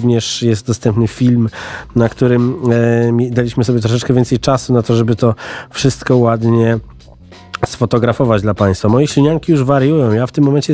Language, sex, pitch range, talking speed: Polish, male, 120-150 Hz, 160 wpm